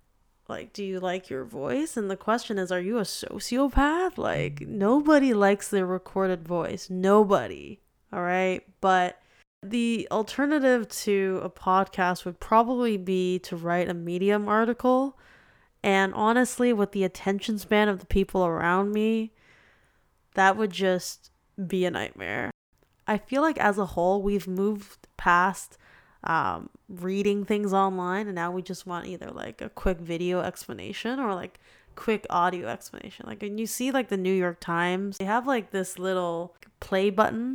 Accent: American